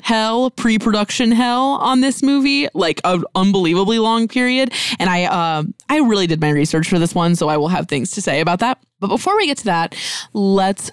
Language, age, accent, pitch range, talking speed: English, 20-39, American, 175-230 Hz, 210 wpm